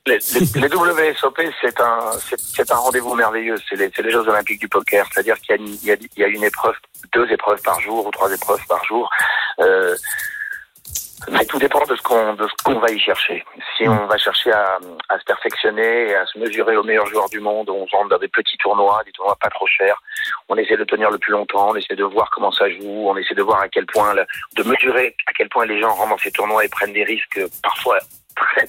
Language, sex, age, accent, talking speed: French, male, 40-59, French, 245 wpm